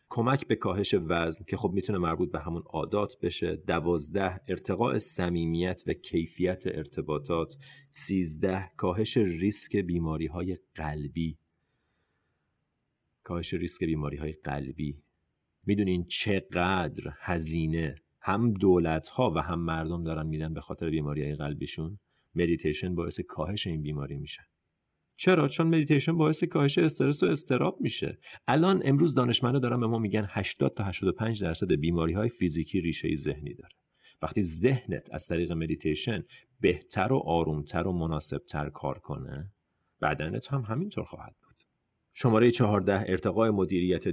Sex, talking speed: male, 135 wpm